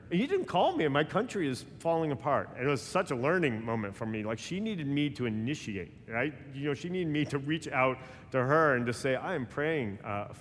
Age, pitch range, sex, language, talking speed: 40-59, 115-155 Hz, male, English, 240 wpm